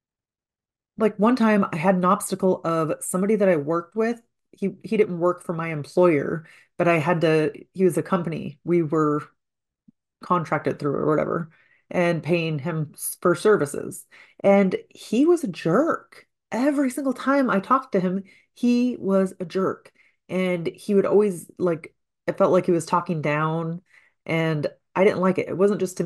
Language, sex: English, female